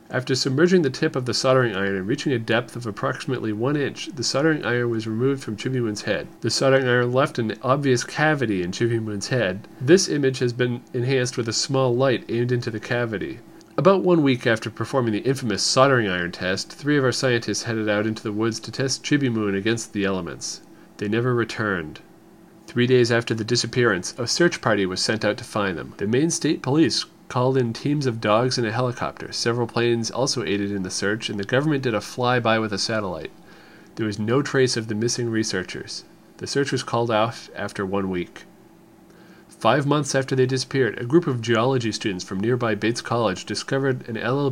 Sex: male